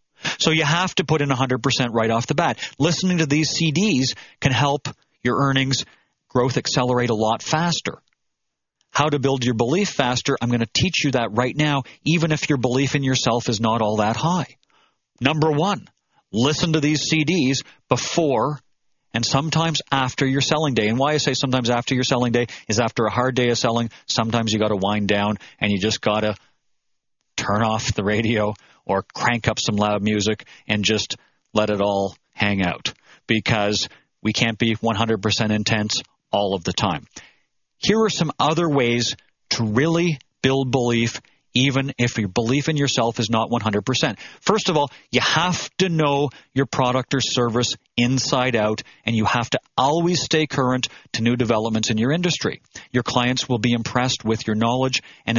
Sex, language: male, English